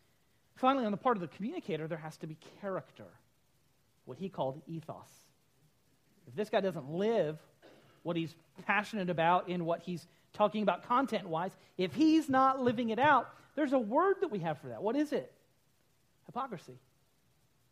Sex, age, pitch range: male, 40-59, 160-230 Hz